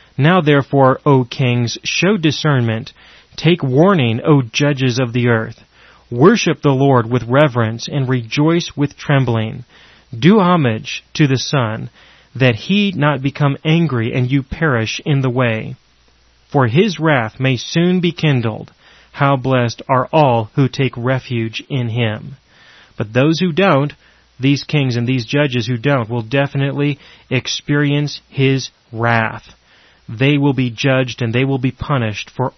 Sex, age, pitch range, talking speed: male, 30-49, 120-145 Hz, 145 wpm